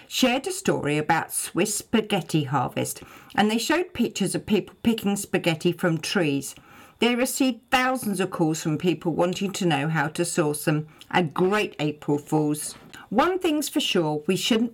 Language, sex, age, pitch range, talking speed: English, female, 50-69, 155-225 Hz, 165 wpm